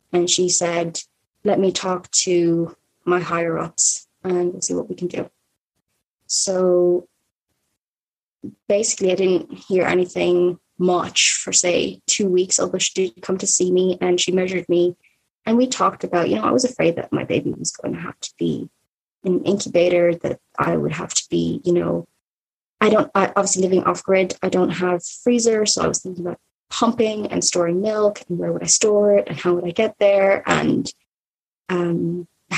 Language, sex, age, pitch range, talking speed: English, female, 20-39, 175-195 Hz, 180 wpm